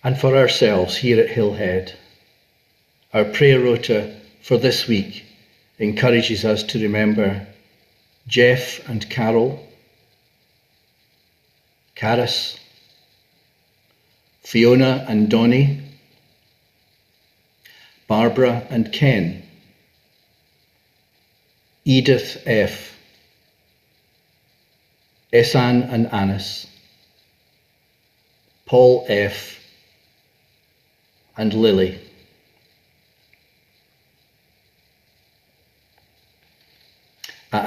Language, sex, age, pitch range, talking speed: English, male, 50-69, 105-125 Hz, 55 wpm